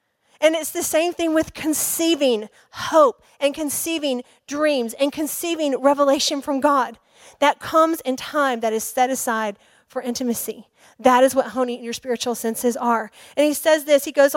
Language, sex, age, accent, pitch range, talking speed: English, female, 40-59, American, 265-330 Hz, 170 wpm